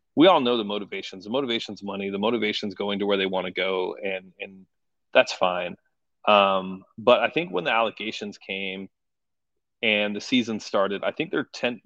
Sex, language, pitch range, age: male, English, 100-115 Hz, 30-49